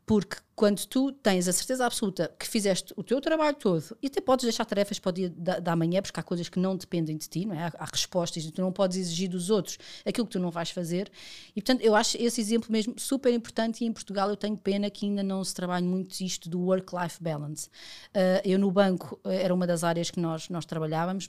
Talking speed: 240 wpm